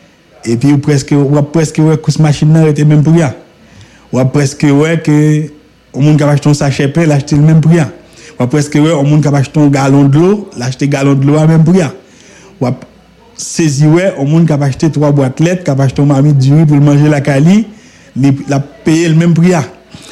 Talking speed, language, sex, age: 180 wpm, English, male, 50-69